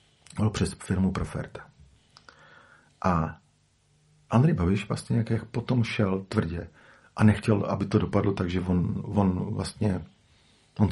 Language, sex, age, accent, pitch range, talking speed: Czech, male, 50-69, native, 95-115 Hz, 120 wpm